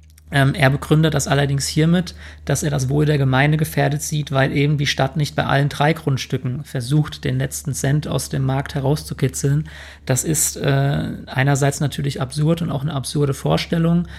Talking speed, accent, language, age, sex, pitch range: 175 wpm, German, German, 40-59, male, 135-150 Hz